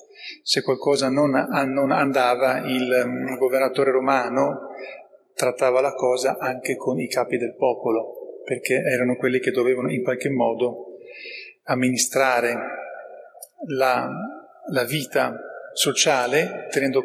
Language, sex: Italian, male